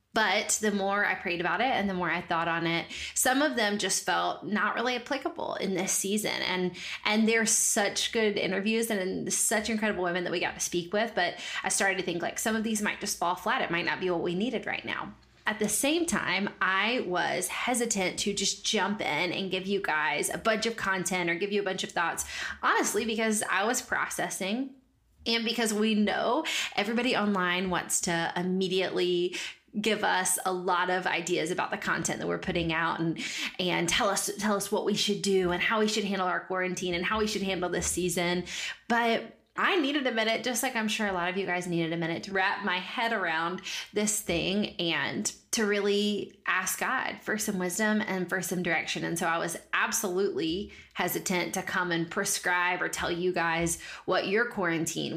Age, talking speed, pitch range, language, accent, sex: 20-39, 210 wpm, 180-220 Hz, English, American, female